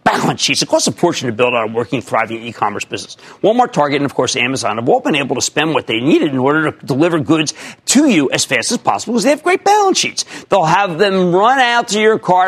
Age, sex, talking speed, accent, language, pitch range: 50-69, male, 260 wpm, American, English, 130-215 Hz